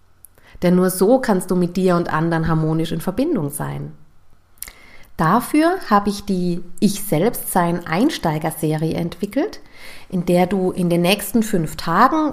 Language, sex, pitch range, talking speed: German, female, 165-220 Hz, 135 wpm